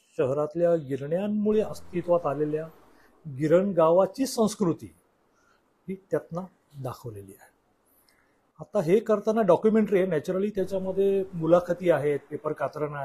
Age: 40-59